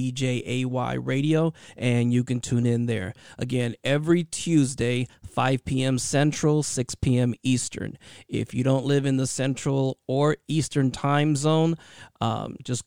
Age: 40-59